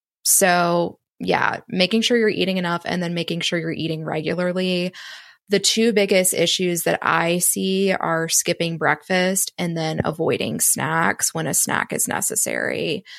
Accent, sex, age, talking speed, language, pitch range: American, female, 20-39, 150 wpm, English, 170-220 Hz